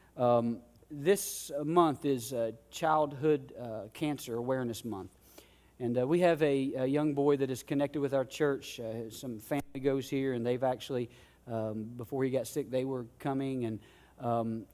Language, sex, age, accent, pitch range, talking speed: English, male, 40-59, American, 125-150 Hz, 170 wpm